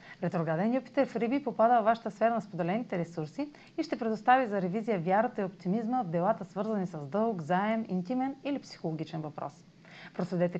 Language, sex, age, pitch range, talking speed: Bulgarian, female, 30-49, 175-240 Hz, 170 wpm